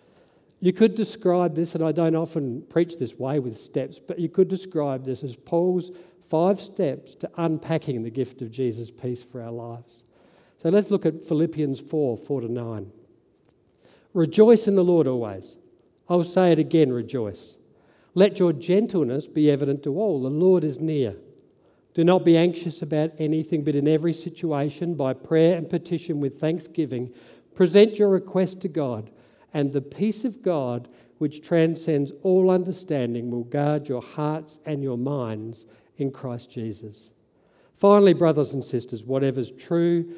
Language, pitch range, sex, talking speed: English, 135-175 Hz, male, 160 wpm